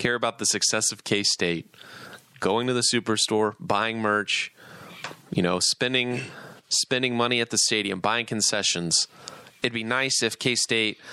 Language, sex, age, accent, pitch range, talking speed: English, male, 30-49, American, 95-120 Hz, 145 wpm